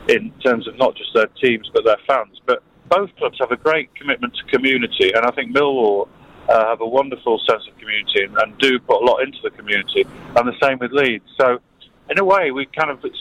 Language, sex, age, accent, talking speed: English, male, 40-59, British, 235 wpm